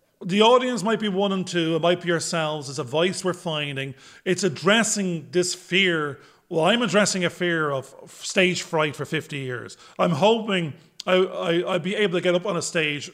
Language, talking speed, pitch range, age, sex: English, 200 wpm, 155-200 Hz, 30-49, male